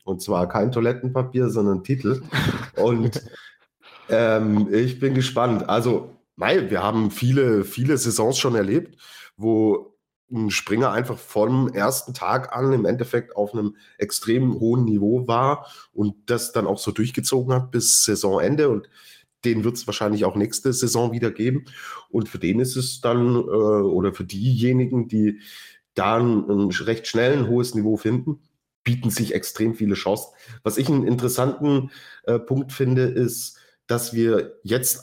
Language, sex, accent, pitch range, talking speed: German, male, German, 105-130 Hz, 155 wpm